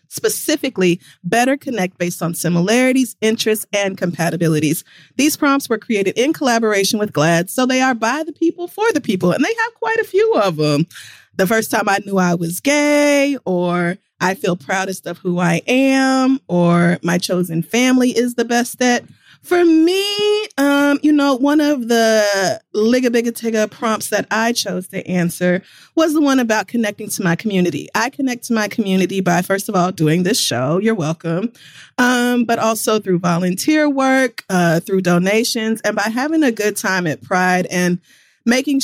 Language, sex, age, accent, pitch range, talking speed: English, female, 30-49, American, 185-255 Hz, 175 wpm